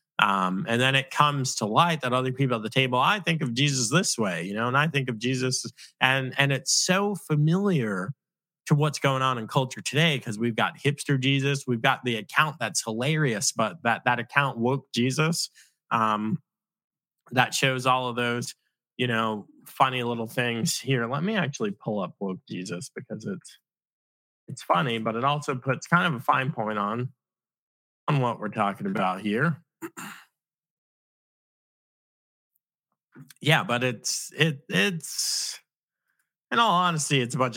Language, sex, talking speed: English, male, 170 wpm